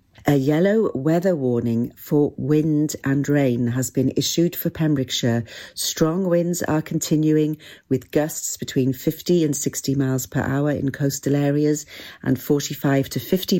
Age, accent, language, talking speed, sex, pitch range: 50-69, British, English, 145 wpm, female, 135-165 Hz